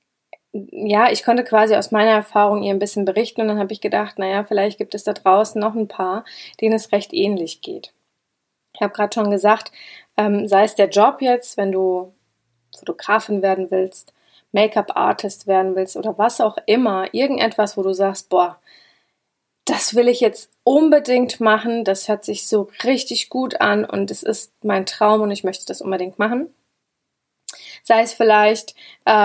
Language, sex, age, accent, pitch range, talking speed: German, female, 20-39, German, 200-225 Hz, 175 wpm